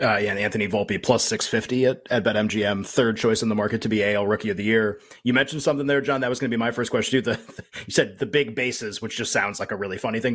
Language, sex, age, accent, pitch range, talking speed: English, male, 30-49, American, 115-140 Hz, 300 wpm